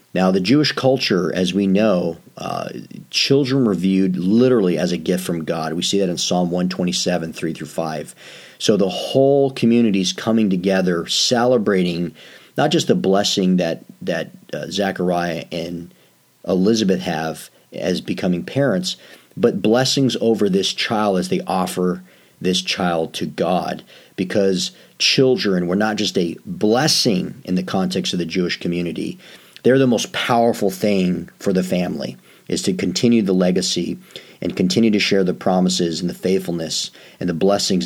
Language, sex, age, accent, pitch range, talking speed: English, male, 40-59, American, 90-110 Hz, 160 wpm